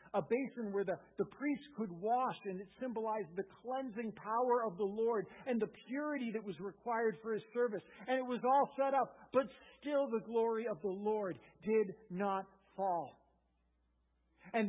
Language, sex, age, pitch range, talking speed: English, male, 50-69, 165-225 Hz, 175 wpm